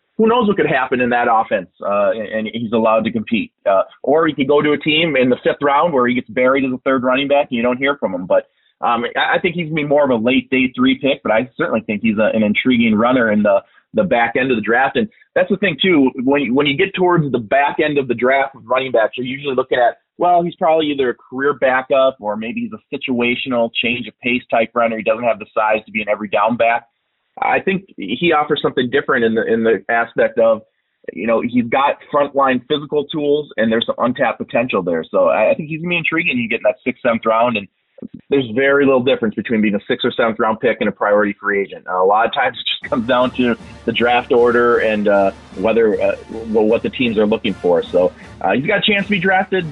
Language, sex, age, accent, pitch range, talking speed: English, male, 30-49, American, 115-165 Hz, 260 wpm